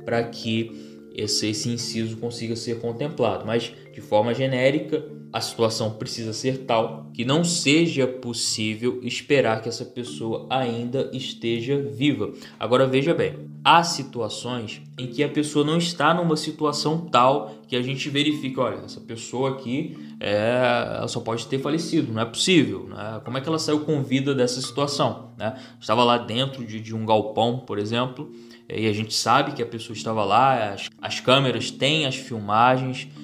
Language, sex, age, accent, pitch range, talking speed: Portuguese, male, 20-39, Brazilian, 115-140 Hz, 170 wpm